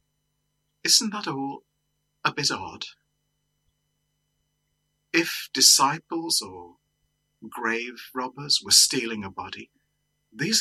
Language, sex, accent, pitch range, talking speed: English, male, British, 125-150 Hz, 90 wpm